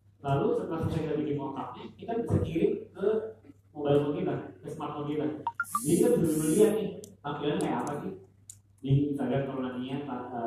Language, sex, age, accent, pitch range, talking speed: English, male, 40-59, Indonesian, 105-155 Hz, 155 wpm